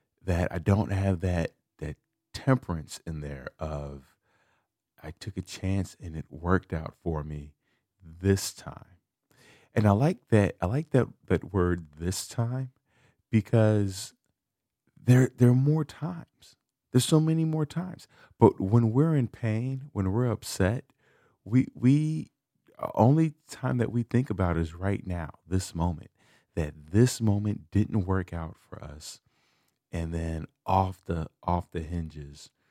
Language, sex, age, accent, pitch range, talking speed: English, male, 40-59, American, 85-120 Hz, 145 wpm